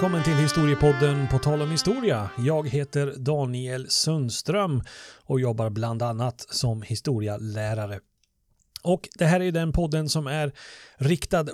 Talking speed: 140 wpm